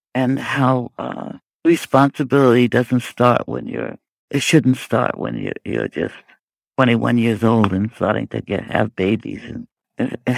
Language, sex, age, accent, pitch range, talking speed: English, male, 60-79, American, 115-140 Hz, 145 wpm